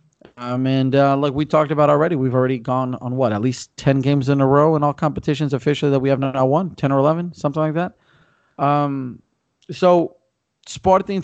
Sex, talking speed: male, 205 wpm